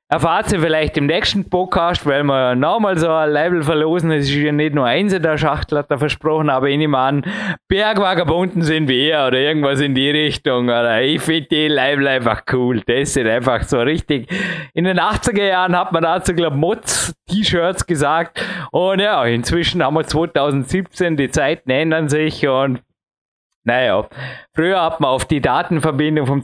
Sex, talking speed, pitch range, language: male, 170 wpm, 140-175 Hz, German